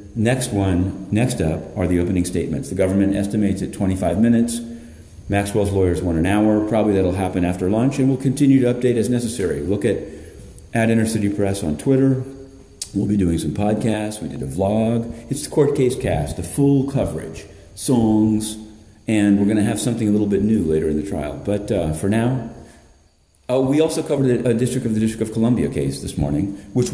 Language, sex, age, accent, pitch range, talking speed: English, male, 40-59, American, 95-125 Hz, 200 wpm